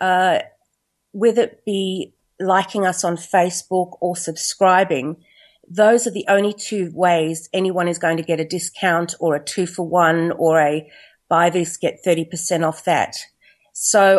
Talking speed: 155 wpm